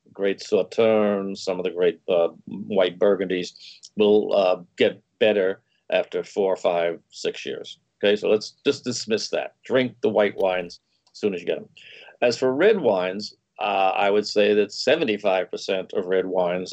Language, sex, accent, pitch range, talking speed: English, male, American, 105-165 Hz, 170 wpm